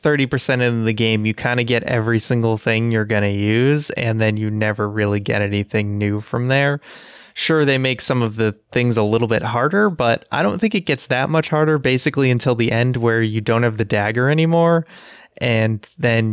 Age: 20-39